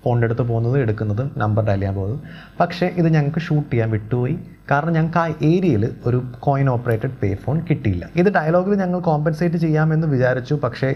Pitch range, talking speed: 110-150 Hz, 160 wpm